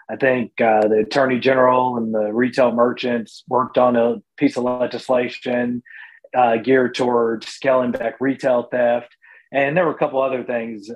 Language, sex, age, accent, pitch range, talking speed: English, male, 30-49, American, 120-135 Hz, 165 wpm